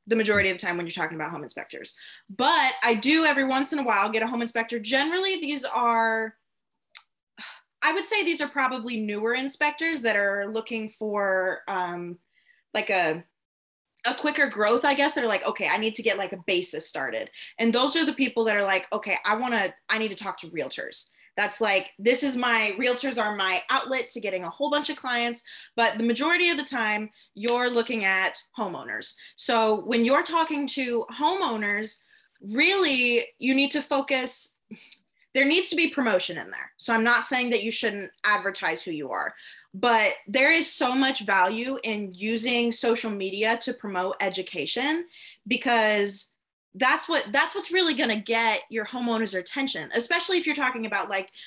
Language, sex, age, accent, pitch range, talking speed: English, female, 20-39, American, 205-275 Hz, 190 wpm